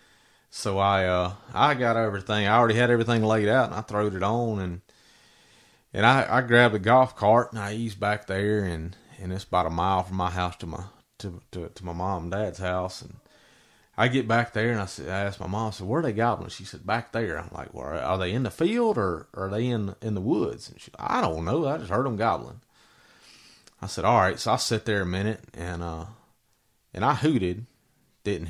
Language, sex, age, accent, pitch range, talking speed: English, male, 30-49, American, 90-120 Hz, 240 wpm